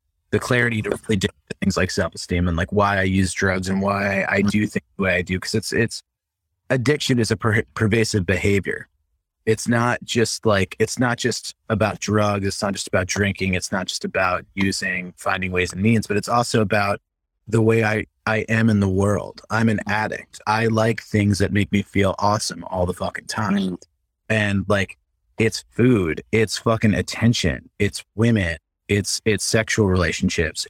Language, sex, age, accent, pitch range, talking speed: English, male, 30-49, American, 95-115 Hz, 185 wpm